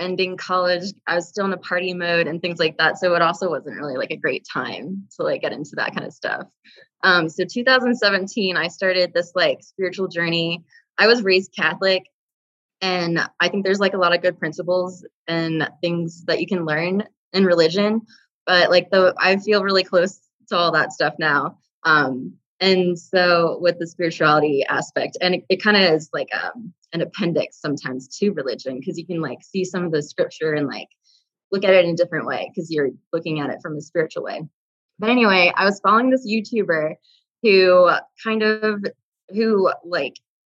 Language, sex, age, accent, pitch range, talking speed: English, female, 20-39, American, 165-195 Hz, 195 wpm